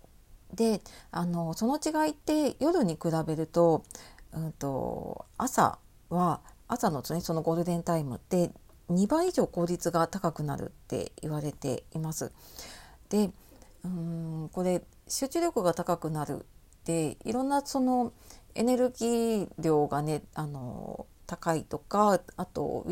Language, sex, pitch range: Japanese, female, 165-245 Hz